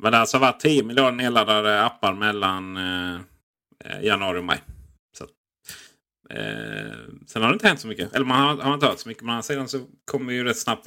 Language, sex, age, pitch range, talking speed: Swedish, male, 30-49, 105-145 Hz, 210 wpm